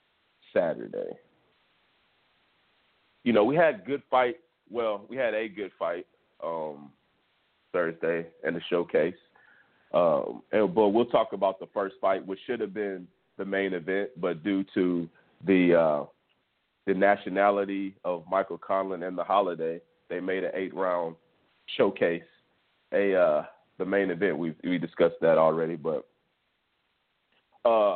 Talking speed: 140 wpm